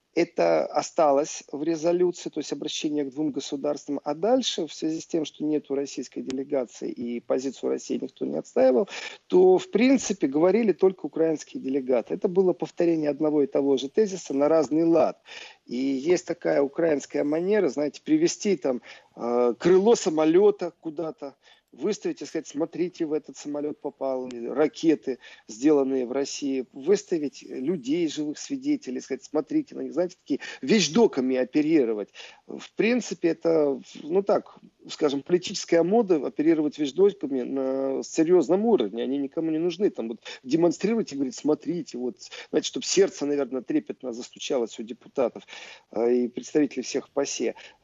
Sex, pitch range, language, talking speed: male, 140-205 Hz, Russian, 145 wpm